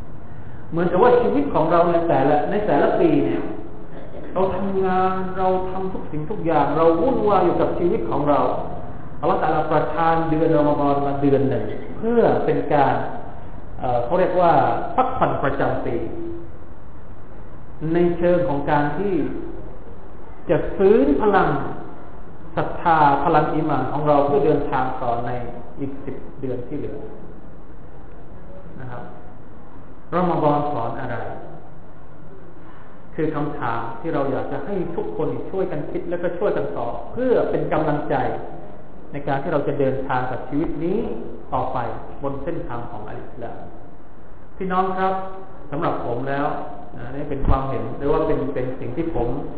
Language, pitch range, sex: Thai, 140-175 Hz, male